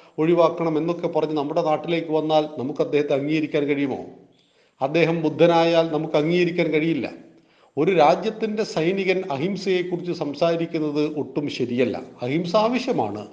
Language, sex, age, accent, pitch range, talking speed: Malayalam, male, 40-59, native, 145-190 Hz, 105 wpm